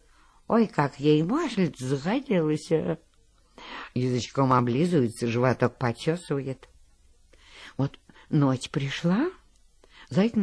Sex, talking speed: female, 75 wpm